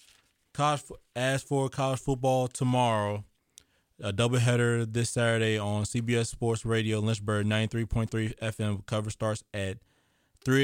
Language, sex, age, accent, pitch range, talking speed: English, male, 20-39, American, 105-125 Hz, 135 wpm